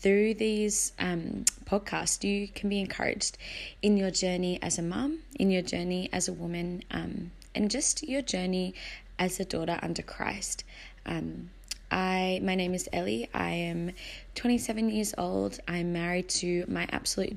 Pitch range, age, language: 170-200 Hz, 20-39, English